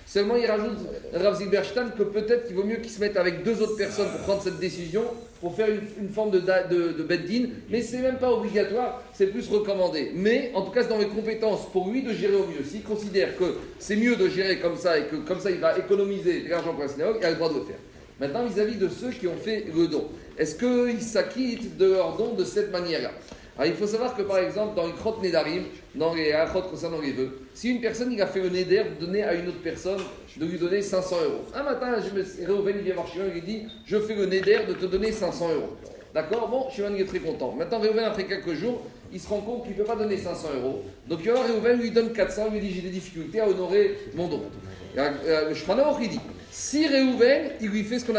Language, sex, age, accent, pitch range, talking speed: French, male, 40-59, French, 180-230 Hz, 255 wpm